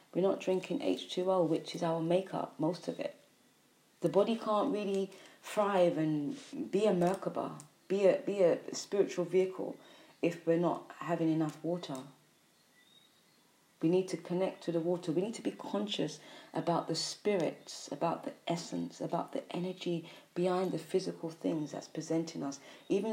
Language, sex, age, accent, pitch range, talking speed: English, female, 30-49, British, 160-190 Hz, 160 wpm